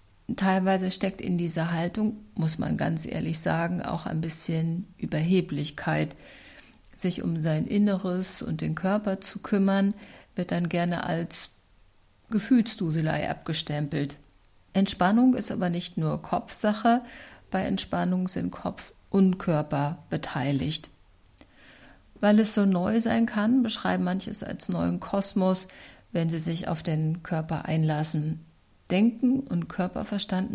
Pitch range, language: 155-200 Hz, German